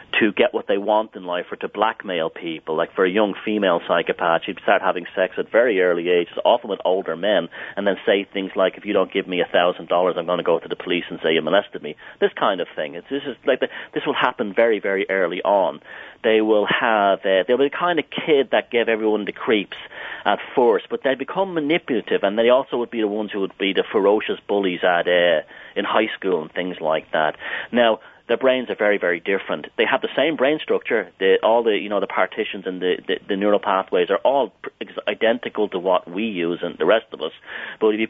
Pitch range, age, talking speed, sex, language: 95-130 Hz, 40-59, 240 wpm, male, English